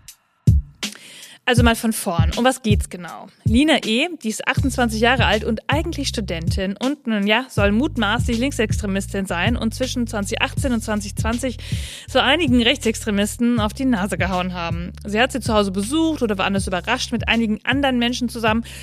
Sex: female